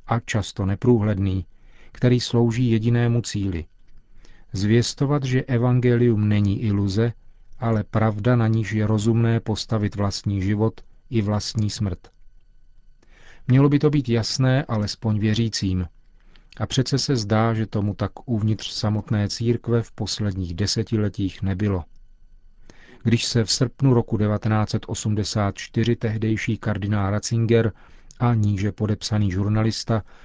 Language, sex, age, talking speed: Czech, male, 40-59, 115 wpm